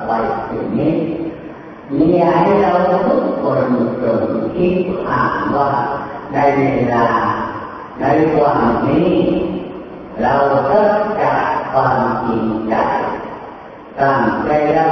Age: 40-59